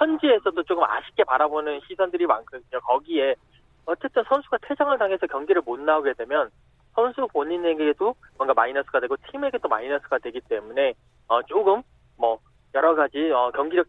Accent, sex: native, male